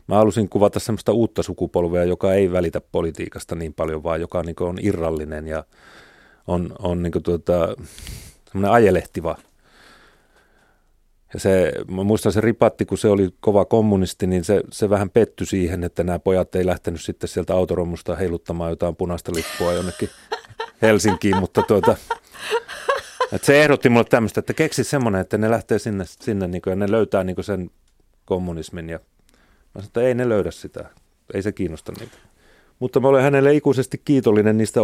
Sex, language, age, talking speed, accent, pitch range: male, Finnish, 30-49, 170 wpm, native, 90-110 Hz